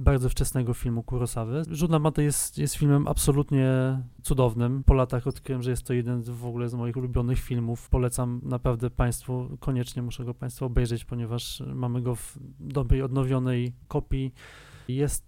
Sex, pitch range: male, 125-145 Hz